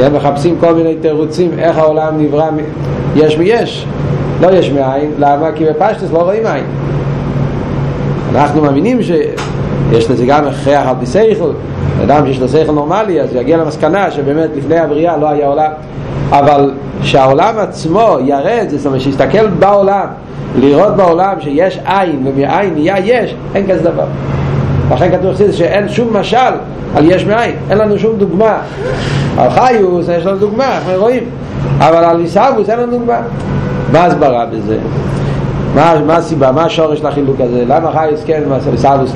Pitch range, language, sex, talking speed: 135-165 Hz, Hebrew, male, 150 wpm